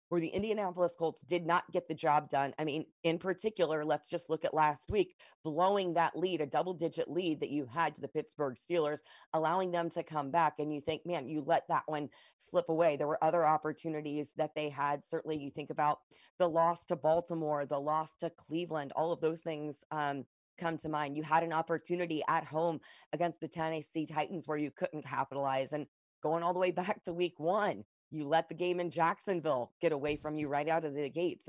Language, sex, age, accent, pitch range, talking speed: English, female, 30-49, American, 150-170 Hz, 215 wpm